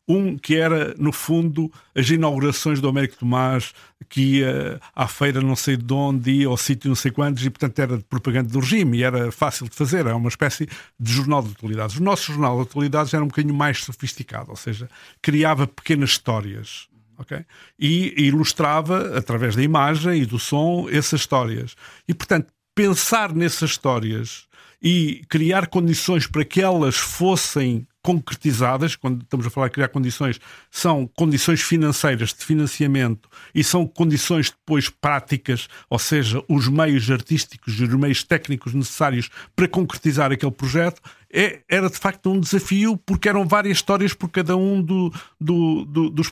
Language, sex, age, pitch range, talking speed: Portuguese, male, 50-69, 130-170 Hz, 170 wpm